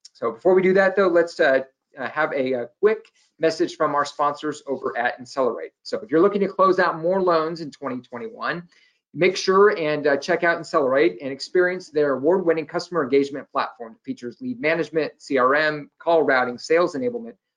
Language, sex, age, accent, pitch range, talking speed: English, male, 40-59, American, 135-180 Hz, 185 wpm